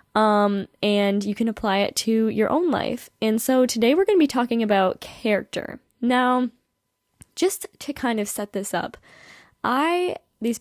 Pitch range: 195-235 Hz